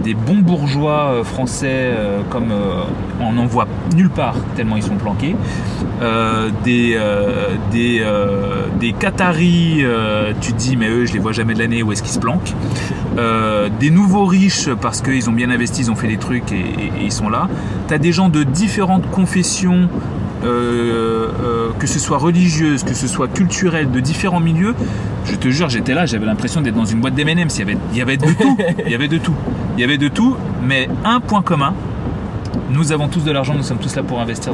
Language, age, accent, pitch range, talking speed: French, 30-49, French, 115-160 Hz, 215 wpm